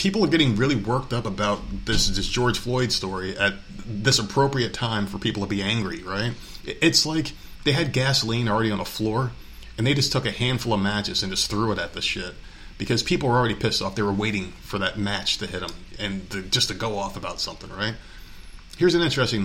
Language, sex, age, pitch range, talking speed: English, male, 30-49, 95-120 Hz, 220 wpm